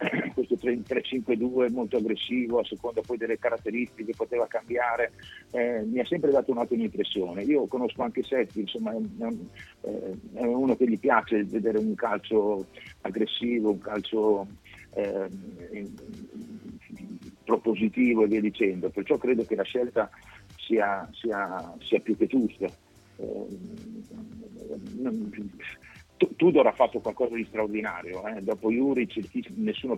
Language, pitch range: Italian, 100-125 Hz